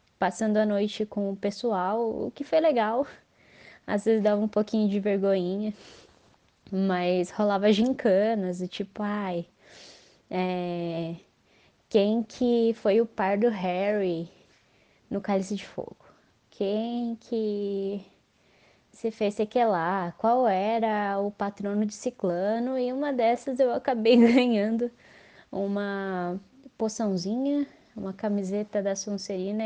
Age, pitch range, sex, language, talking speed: 20-39, 195-235 Hz, female, Portuguese, 115 wpm